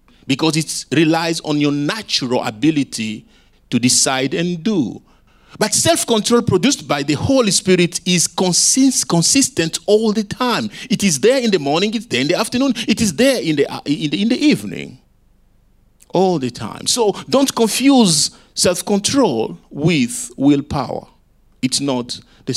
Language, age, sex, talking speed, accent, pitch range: English, 50-69, male, 145 wpm, Nigerian, 135-210 Hz